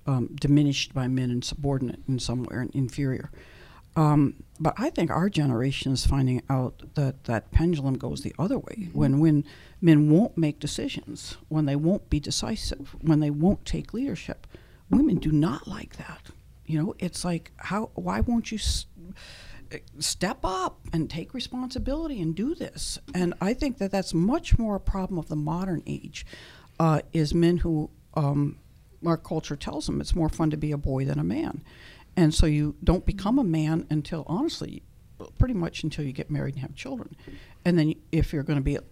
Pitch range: 140-170 Hz